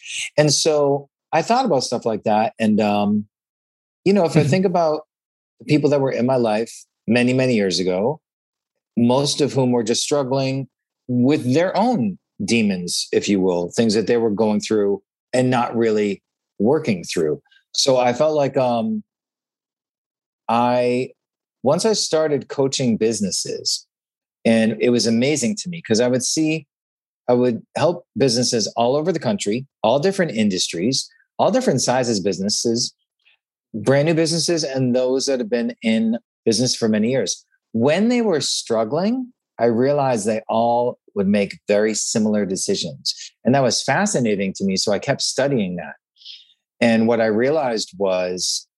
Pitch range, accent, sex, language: 110-140 Hz, American, male, English